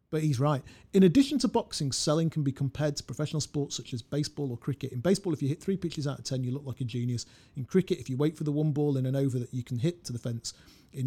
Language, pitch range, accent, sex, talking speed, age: English, 125-155 Hz, British, male, 295 wpm, 40-59